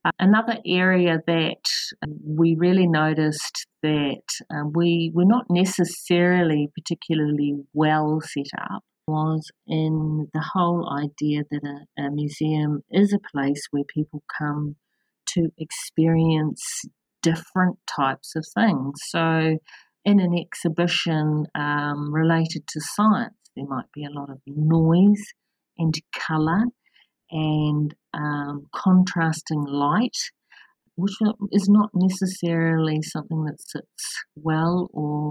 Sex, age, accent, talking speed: female, 50-69, Australian, 115 wpm